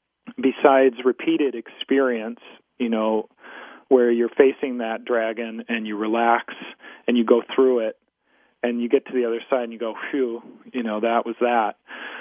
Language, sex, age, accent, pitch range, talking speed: English, male, 40-59, American, 120-140 Hz, 165 wpm